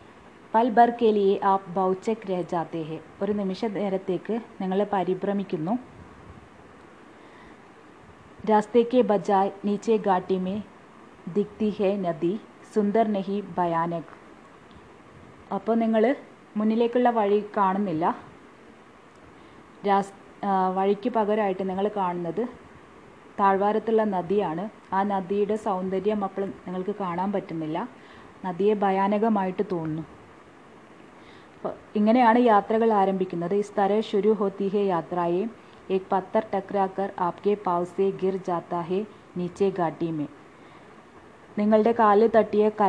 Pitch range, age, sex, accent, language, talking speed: 185-215 Hz, 20-39, female, native, Hindi, 70 wpm